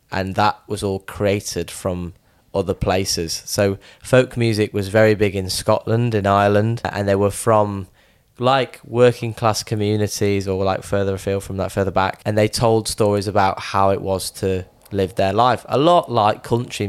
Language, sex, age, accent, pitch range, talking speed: English, male, 10-29, British, 95-115 Hz, 180 wpm